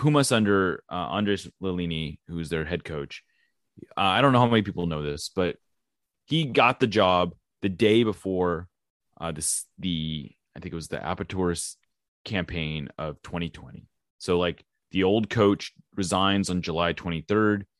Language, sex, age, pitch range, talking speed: English, male, 30-49, 85-105 Hz, 160 wpm